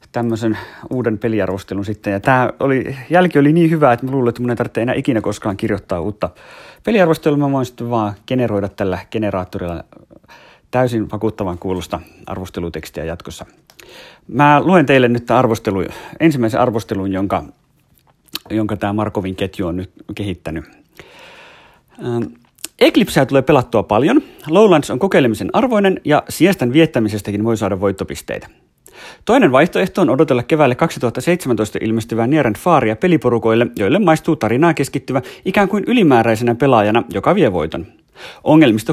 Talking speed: 135 wpm